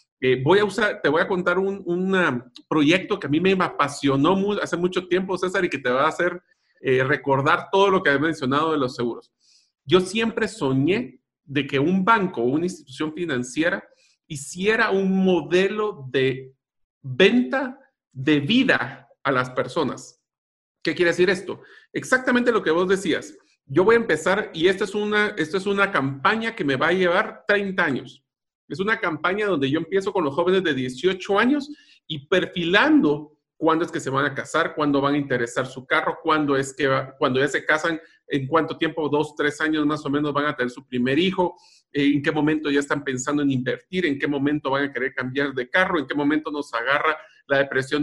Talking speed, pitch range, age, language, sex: 200 wpm, 140-195 Hz, 50-69, Spanish, male